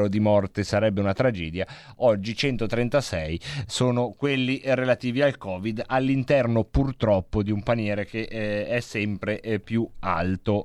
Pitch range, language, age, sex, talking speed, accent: 110-140 Hz, Italian, 30-49, male, 135 wpm, native